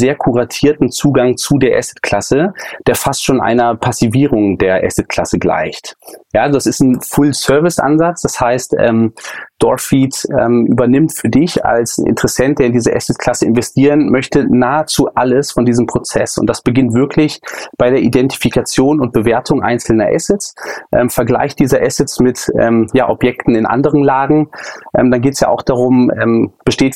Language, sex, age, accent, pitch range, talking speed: German, male, 30-49, German, 120-140 Hz, 160 wpm